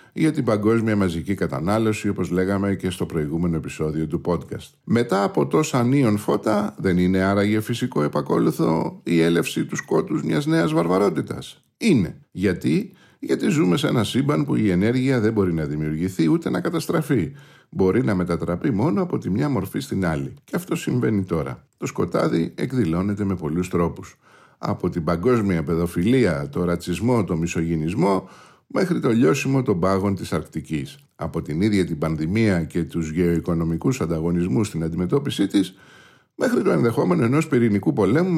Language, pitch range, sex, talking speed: Greek, 85-125 Hz, male, 155 wpm